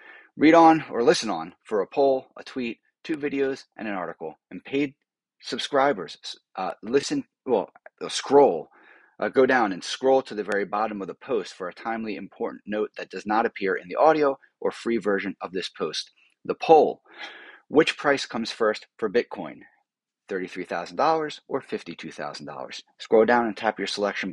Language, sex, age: English, male, 30-49